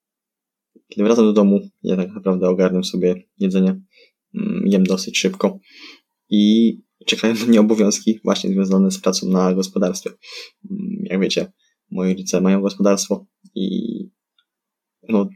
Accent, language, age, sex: native, Polish, 20-39, male